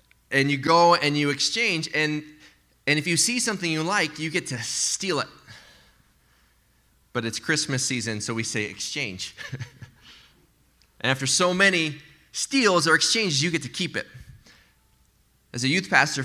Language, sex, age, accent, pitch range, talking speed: English, male, 30-49, American, 100-145 Hz, 160 wpm